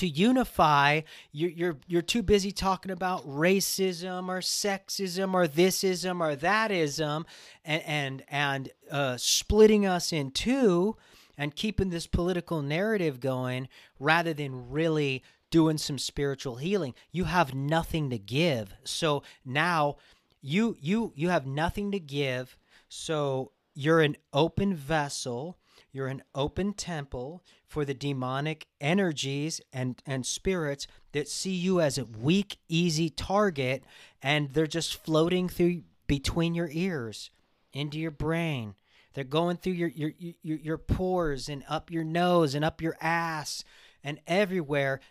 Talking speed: 140 wpm